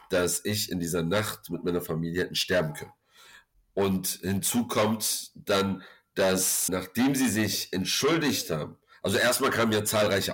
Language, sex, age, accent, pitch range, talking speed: German, male, 50-69, German, 95-110 Hz, 145 wpm